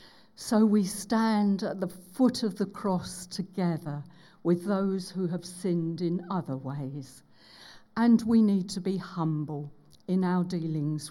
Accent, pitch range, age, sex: British, 155-205 Hz, 50-69, female